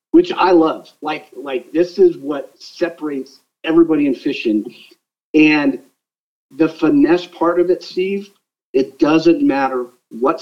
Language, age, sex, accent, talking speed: English, 50-69, male, American, 130 wpm